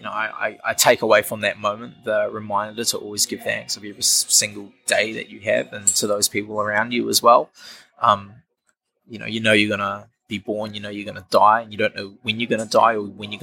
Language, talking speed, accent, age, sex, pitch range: English, 270 wpm, Australian, 20-39, male, 105-120 Hz